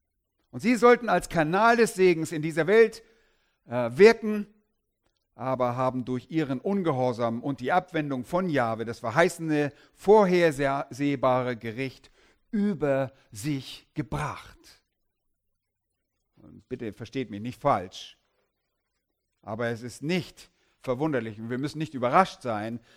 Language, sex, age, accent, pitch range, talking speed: German, male, 50-69, German, 115-170 Hz, 120 wpm